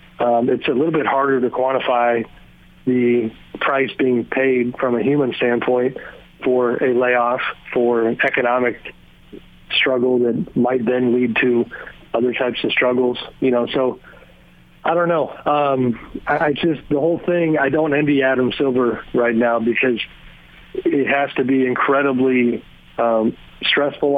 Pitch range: 120-135 Hz